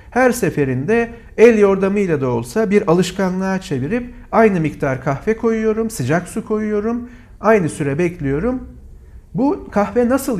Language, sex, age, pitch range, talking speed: Turkish, male, 50-69, 140-200 Hz, 125 wpm